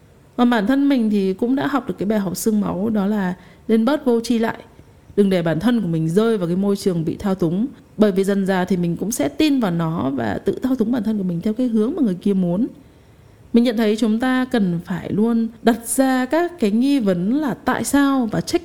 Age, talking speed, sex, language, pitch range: 20-39, 255 wpm, female, Vietnamese, 180-250 Hz